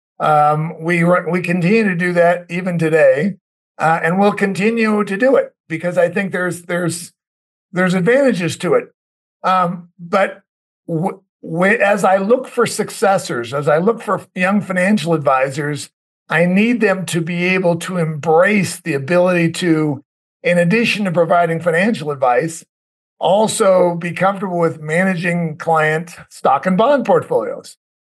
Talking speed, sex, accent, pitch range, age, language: 145 wpm, male, American, 165-200 Hz, 50-69, English